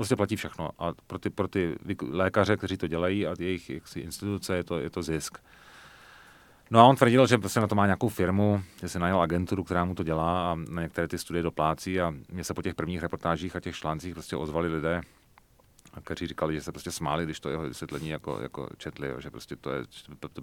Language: Czech